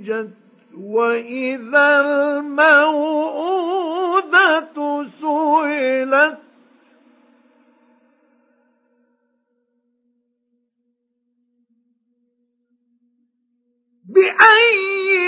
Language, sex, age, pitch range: Arabic, male, 50-69, 245-320 Hz